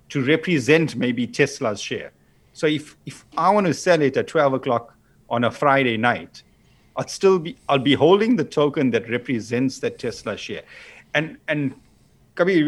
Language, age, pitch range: English, 50-69, 120-160 Hz